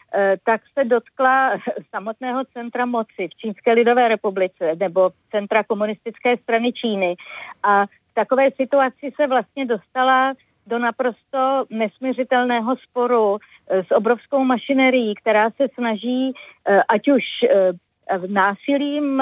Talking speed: 110 wpm